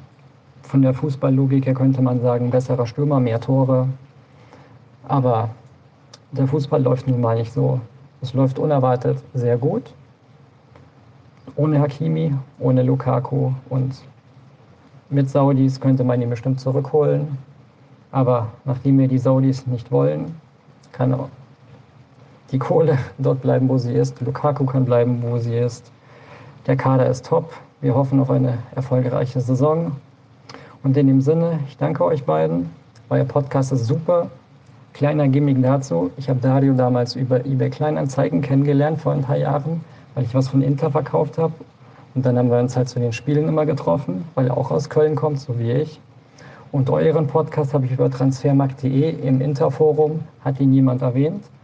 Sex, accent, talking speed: male, German, 155 wpm